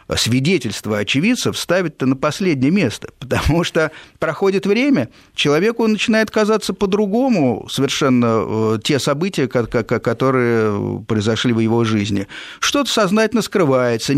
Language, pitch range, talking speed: Russian, 120-175 Hz, 105 wpm